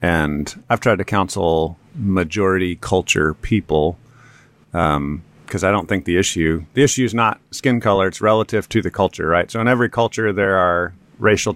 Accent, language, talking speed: American, English, 175 wpm